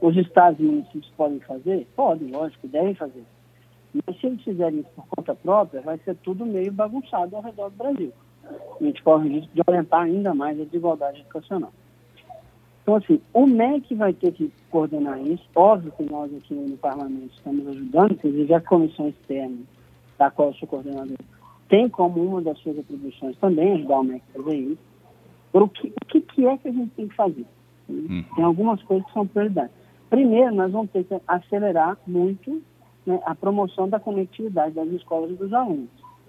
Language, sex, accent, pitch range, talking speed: Portuguese, male, Brazilian, 145-210 Hz, 180 wpm